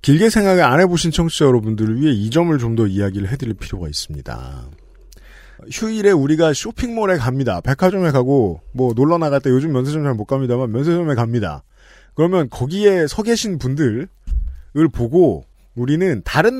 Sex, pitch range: male, 105-175 Hz